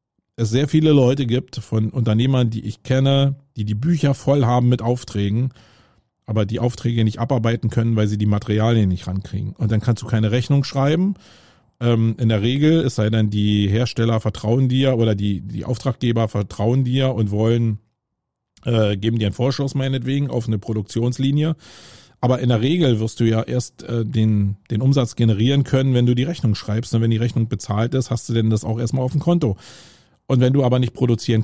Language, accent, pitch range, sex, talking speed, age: German, German, 110-130 Hz, male, 195 wpm, 40-59